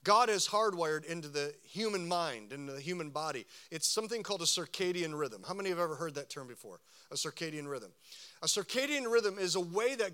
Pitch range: 155-205 Hz